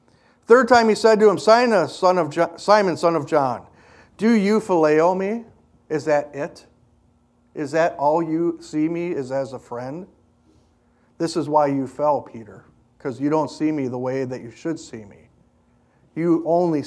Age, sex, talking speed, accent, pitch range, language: 50-69, male, 165 wpm, American, 140-185 Hz, English